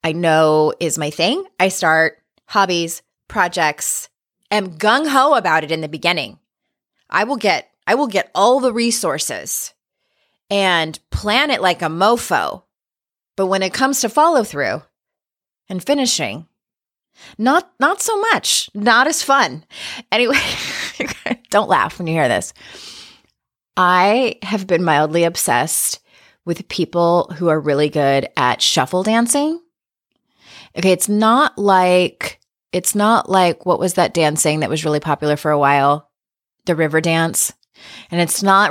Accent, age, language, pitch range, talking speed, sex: American, 30-49, English, 155-215 Hz, 140 wpm, female